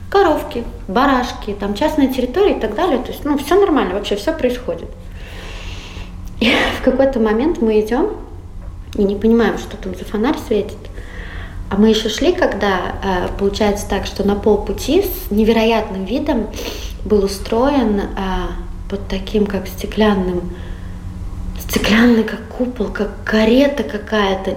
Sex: female